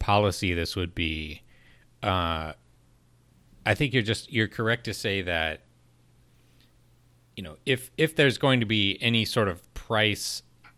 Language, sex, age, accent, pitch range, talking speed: English, male, 30-49, American, 90-120 Hz, 145 wpm